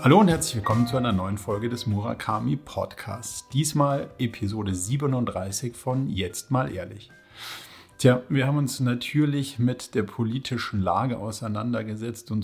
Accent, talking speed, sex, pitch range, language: German, 135 wpm, male, 105-130 Hz, German